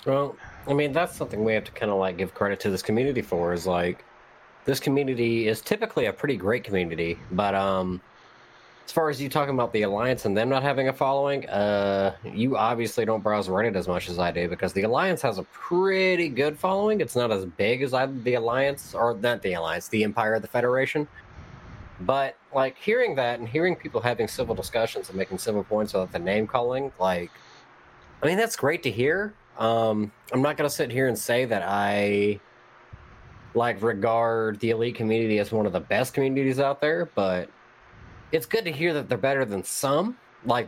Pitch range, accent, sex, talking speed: 100-135 Hz, American, male, 205 wpm